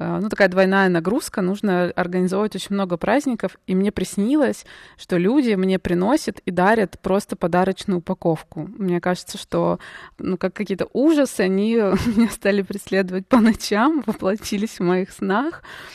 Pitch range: 180-210 Hz